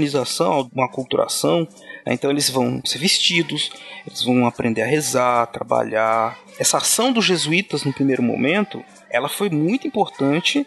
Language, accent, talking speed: Portuguese, Brazilian, 135 wpm